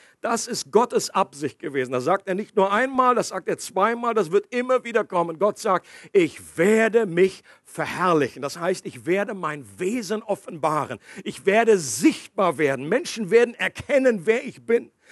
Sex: male